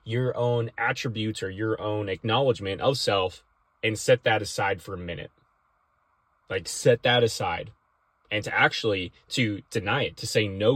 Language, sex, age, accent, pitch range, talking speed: English, male, 20-39, American, 95-120 Hz, 160 wpm